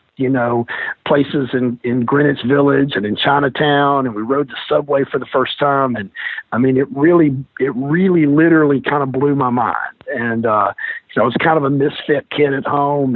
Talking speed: 205 wpm